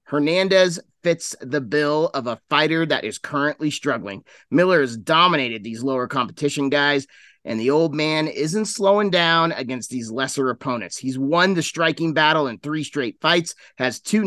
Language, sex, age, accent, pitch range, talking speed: English, male, 30-49, American, 135-170 Hz, 170 wpm